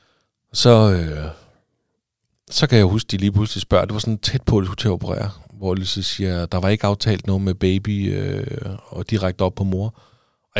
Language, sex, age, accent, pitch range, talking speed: Danish, male, 30-49, native, 95-115 Hz, 215 wpm